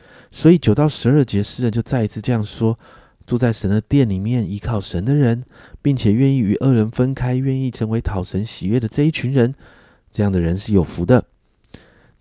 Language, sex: Chinese, male